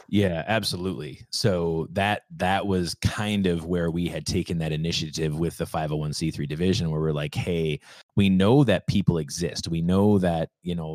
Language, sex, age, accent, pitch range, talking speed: English, male, 20-39, American, 80-105 Hz, 175 wpm